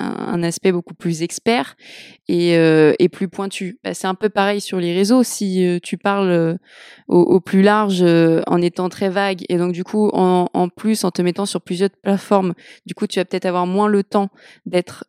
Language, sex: French, female